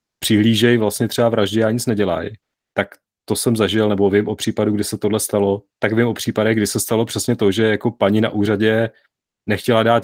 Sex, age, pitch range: male, 30-49, 105-115 Hz